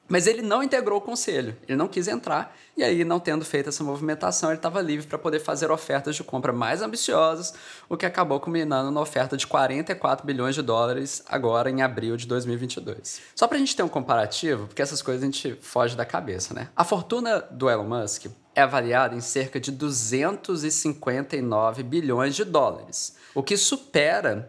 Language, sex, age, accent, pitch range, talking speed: English, male, 20-39, Brazilian, 140-205 Hz, 190 wpm